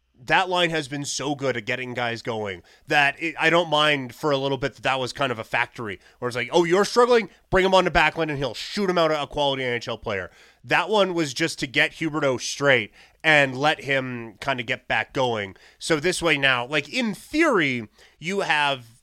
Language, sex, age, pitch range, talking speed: English, male, 30-49, 125-160 Hz, 225 wpm